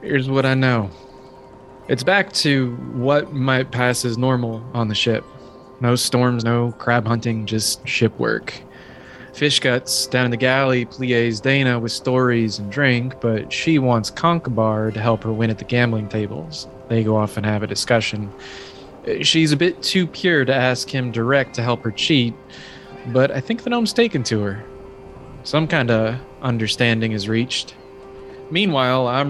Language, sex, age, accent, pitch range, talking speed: English, male, 20-39, American, 115-135 Hz, 170 wpm